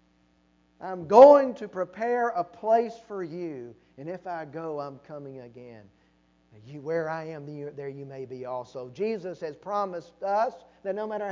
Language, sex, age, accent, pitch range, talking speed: English, male, 40-59, American, 135-230 Hz, 160 wpm